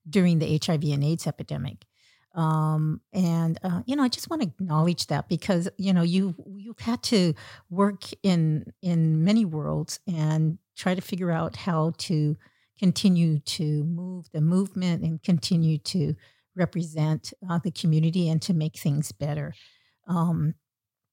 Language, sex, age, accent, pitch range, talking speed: English, female, 50-69, American, 155-195 Hz, 155 wpm